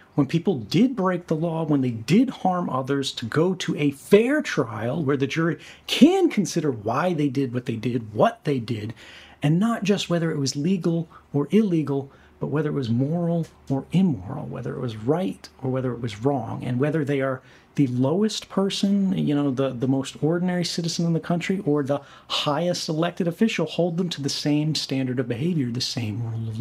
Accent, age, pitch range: American, 40-59, 135-180 Hz